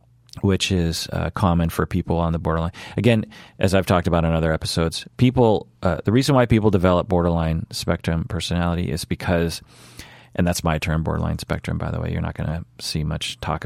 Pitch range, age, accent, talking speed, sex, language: 80-95 Hz, 30-49, American, 200 wpm, male, English